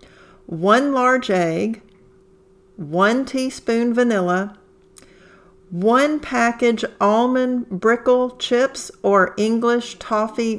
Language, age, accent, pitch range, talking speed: English, 50-69, American, 190-225 Hz, 80 wpm